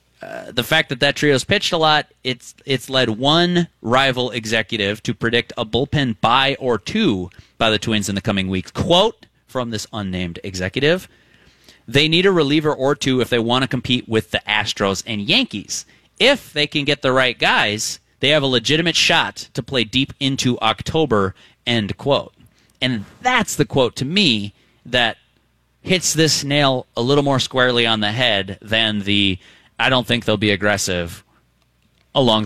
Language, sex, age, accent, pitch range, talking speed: English, male, 30-49, American, 105-145 Hz, 175 wpm